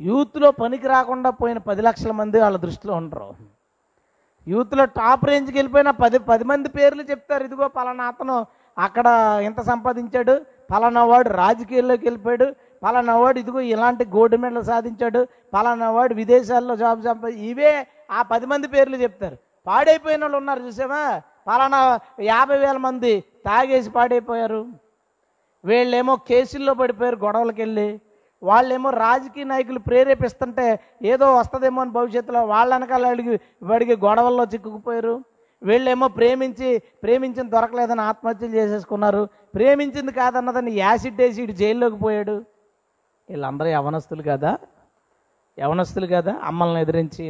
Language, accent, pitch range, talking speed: Telugu, native, 210-255 Hz, 120 wpm